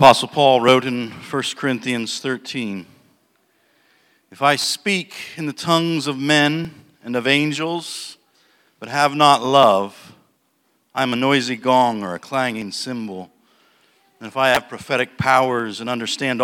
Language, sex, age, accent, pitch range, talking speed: English, male, 50-69, American, 110-140 Hz, 140 wpm